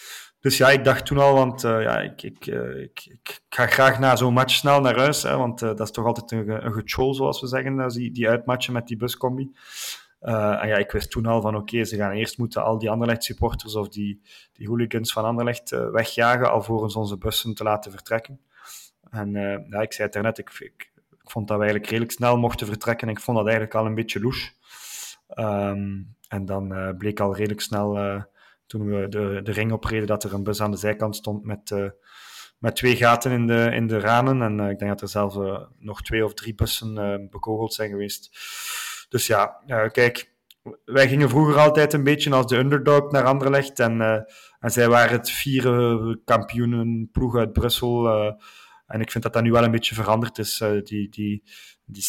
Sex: male